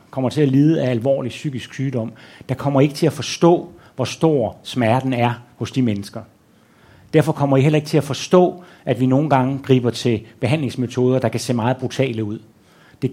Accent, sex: native, male